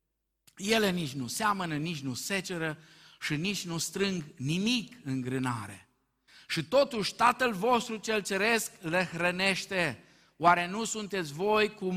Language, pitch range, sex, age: Romanian, 160-225 Hz, male, 50-69